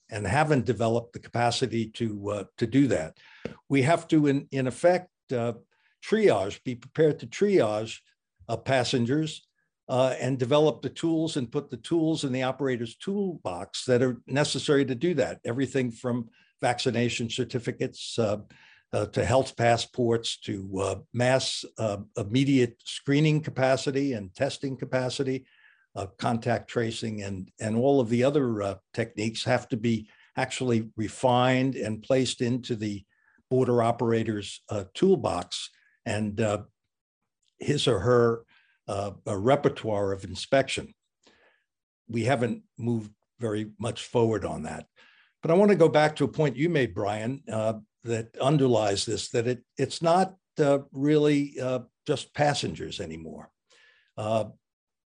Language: English